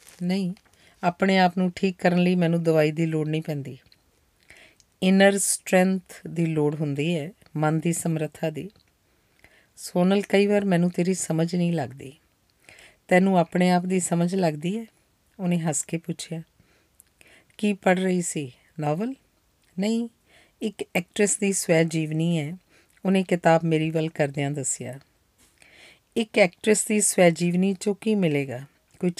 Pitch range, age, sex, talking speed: 165-195 Hz, 40-59, female, 130 wpm